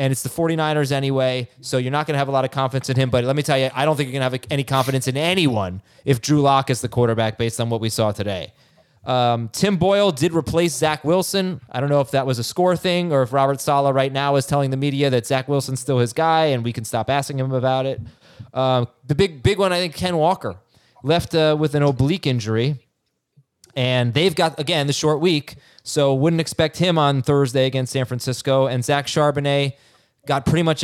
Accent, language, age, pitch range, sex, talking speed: American, English, 20-39, 125-155 Hz, male, 235 wpm